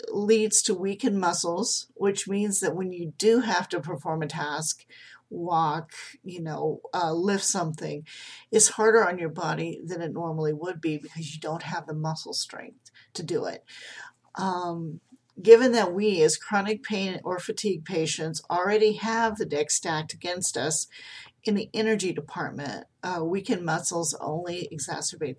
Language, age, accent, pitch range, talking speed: English, 40-59, American, 155-200 Hz, 160 wpm